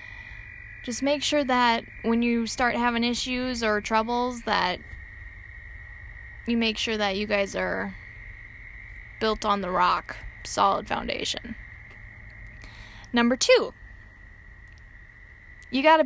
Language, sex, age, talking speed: English, female, 10-29, 110 wpm